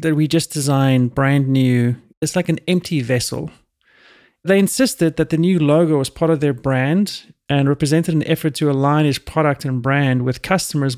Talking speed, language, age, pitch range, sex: 185 wpm, English, 30-49, 140-170 Hz, male